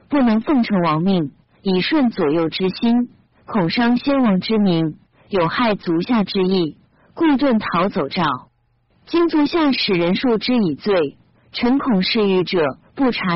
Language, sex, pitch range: Chinese, female, 180-260 Hz